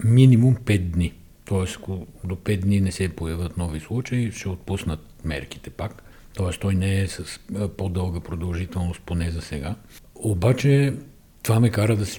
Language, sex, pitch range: Bulgarian, male, 90-110 Hz